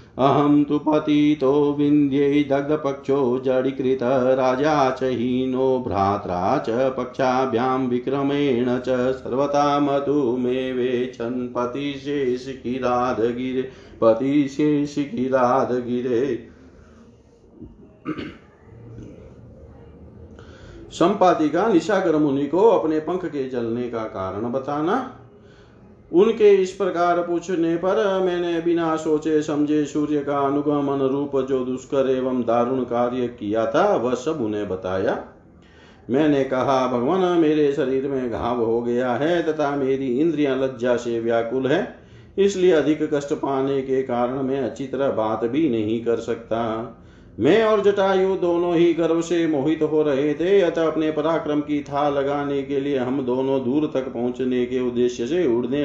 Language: Hindi